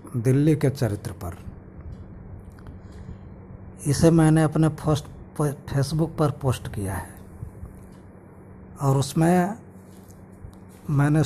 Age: 60-79